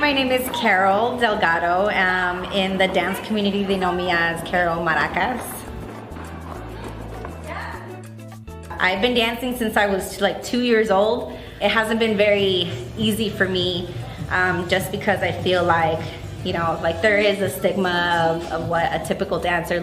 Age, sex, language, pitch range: 20-39, female, English, 170-205 Hz